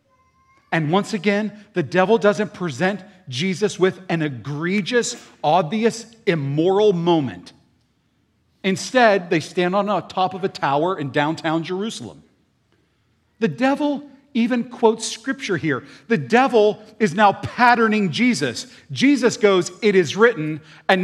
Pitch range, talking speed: 140-220 Hz, 125 wpm